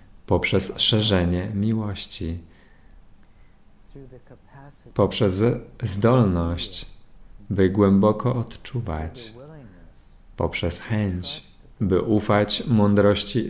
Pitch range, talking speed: 95-115 Hz, 60 wpm